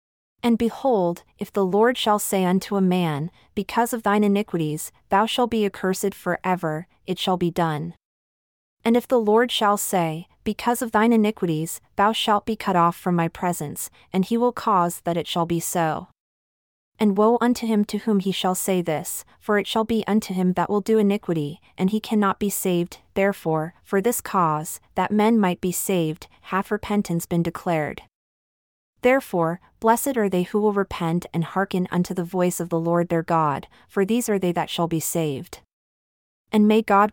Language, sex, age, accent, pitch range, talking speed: English, female, 30-49, American, 170-210 Hz, 190 wpm